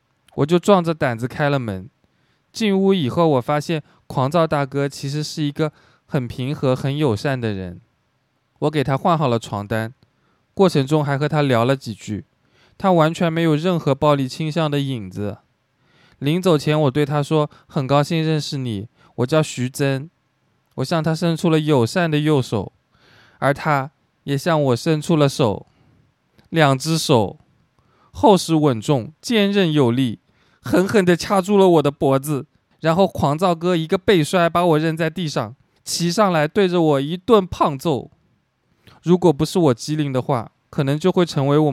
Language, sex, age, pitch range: Chinese, male, 20-39, 130-165 Hz